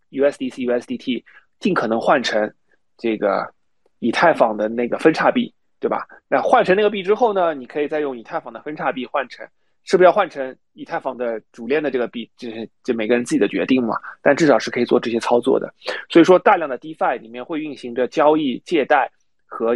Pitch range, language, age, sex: 115-165 Hz, Chinese, 20-39, male